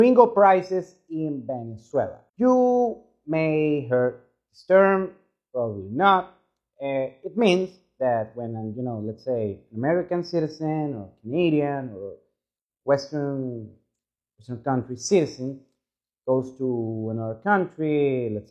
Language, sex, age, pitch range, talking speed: English, male, 30-49, 115-170 Hz, 115 wpm